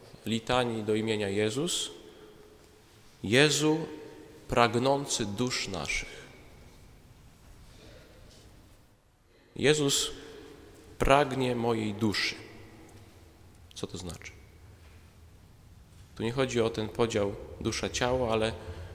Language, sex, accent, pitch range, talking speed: Polish, male, native, 100-125 Hz, 75 wpm